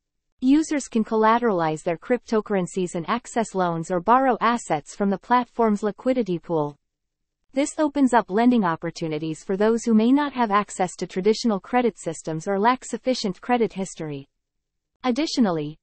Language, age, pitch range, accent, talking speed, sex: English, 40-59, 180-240 Hz, American, 145 wpm, female